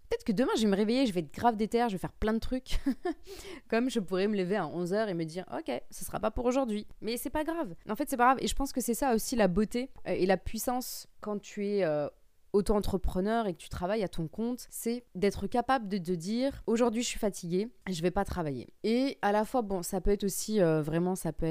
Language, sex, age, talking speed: French, female, 20-39, 275 wpm